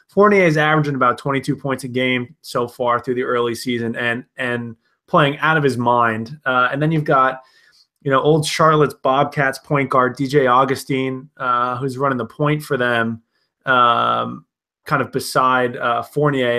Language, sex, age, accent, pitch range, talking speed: English, male, 20-39, American, 125-155 Hz, 175 wpm